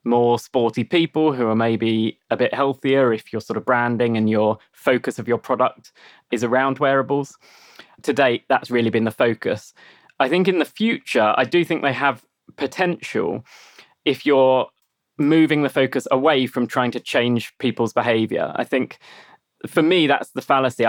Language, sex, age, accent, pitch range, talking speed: English, male, 20-39, British, 115-135 Hz, 170 wpm